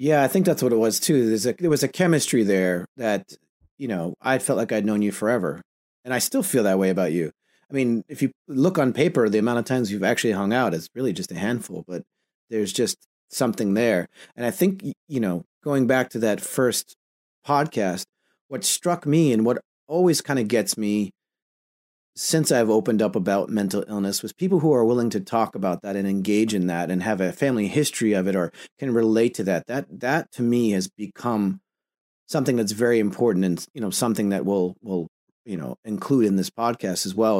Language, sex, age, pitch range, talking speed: English, male, 30-49, 100-130 Hz, 220 wpm